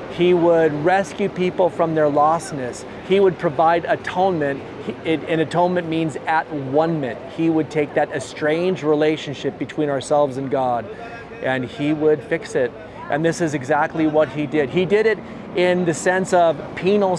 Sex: male